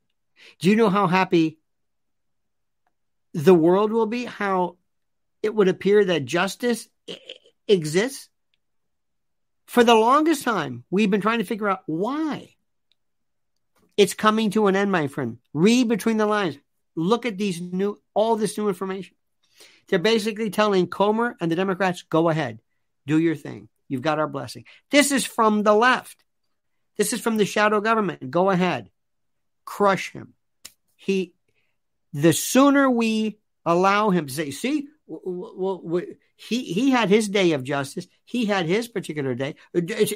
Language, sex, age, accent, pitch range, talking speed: English, male, 50-69, American, 175-230 Hz, 150 wpm